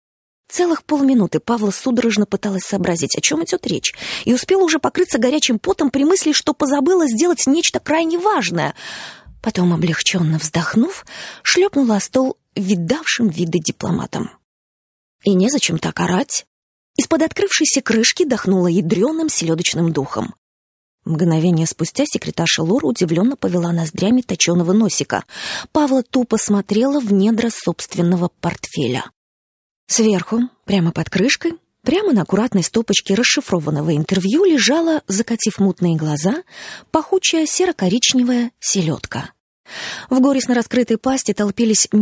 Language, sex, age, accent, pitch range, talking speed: Russian, female, 20-39, native, 175-270 Hz, 115 wpm